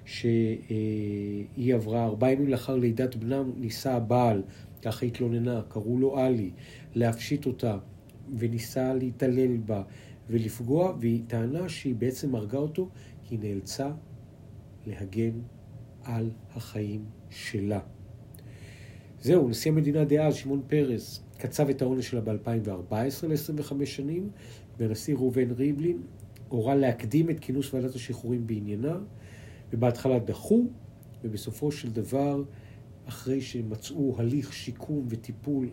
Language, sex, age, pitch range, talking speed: Hebrew, male, 50-69, 110-135 Hz, 110 wpm